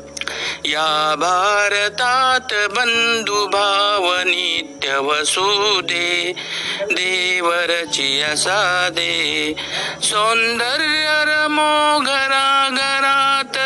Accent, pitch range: native, 175-265 Hz